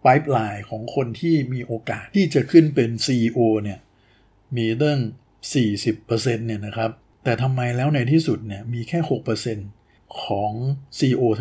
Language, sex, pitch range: Thai, male, 110-135 Hz